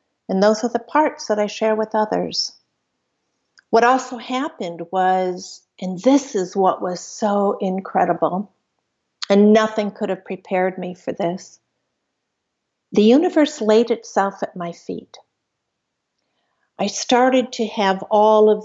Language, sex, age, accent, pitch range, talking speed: English, female, 50-69, American, 180-220 Hz, 135 wpm